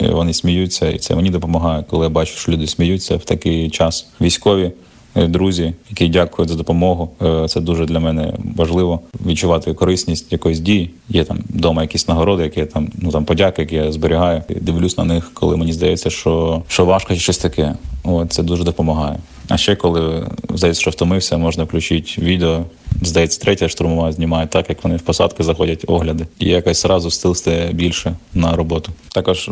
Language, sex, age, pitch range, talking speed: Ukrainian, male, 20-39, 80-90 Hz, 180 wpm